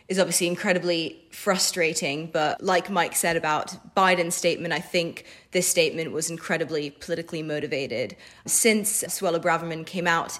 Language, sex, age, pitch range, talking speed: English, female, 20-39, 160-180 Hz, 140 wpm